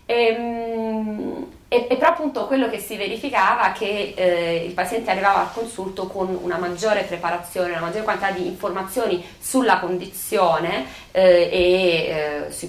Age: 30-49